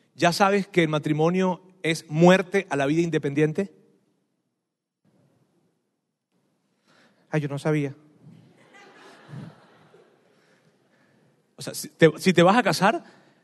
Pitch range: 155-210 Hz